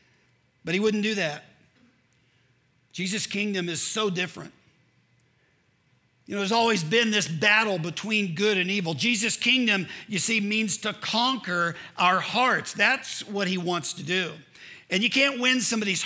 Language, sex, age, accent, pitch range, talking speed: English, male, 50-69, American, 145-210 Hz, 155 wpm